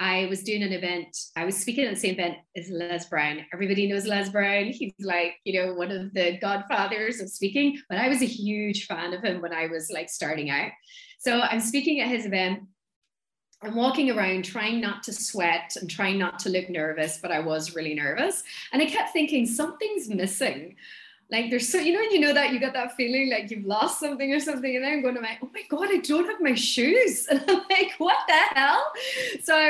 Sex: female